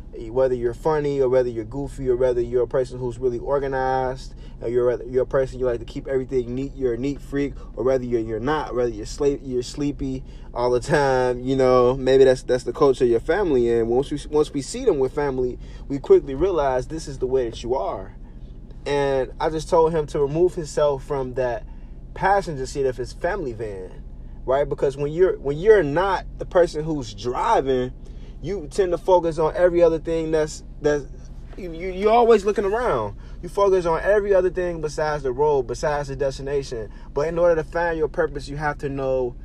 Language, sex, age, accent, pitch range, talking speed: English, male, 20-39, American, 125-160 Hz, 210 wpm